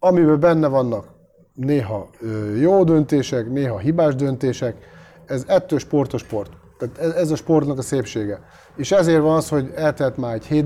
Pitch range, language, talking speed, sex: 115-150 Hz, Hungarian, 170 wpm, male